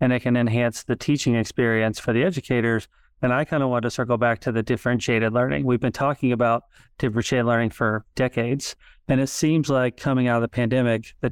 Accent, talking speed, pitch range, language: American, 210 wpm, 115-130 Hz, English